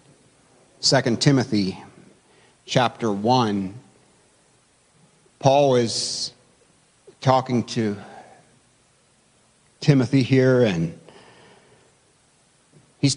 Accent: American